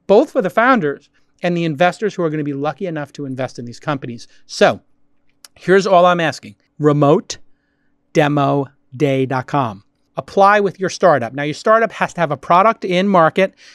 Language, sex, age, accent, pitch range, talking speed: English, male, 40-59, American, 145-185 Hz, 170 wpm